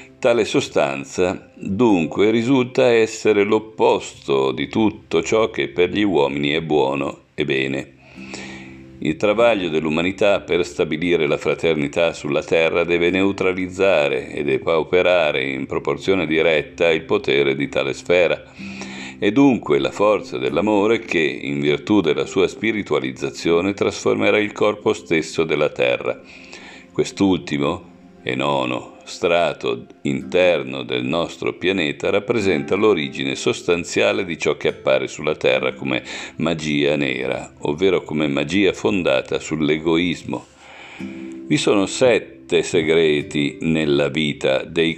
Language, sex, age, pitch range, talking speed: Italian, male, 50-69, 65-105 Hz, 115 wpm